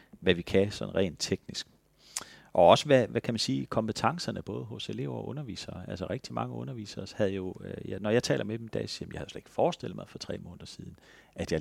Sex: male